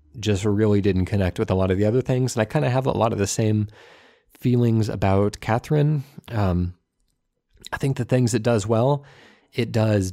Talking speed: 200 wpm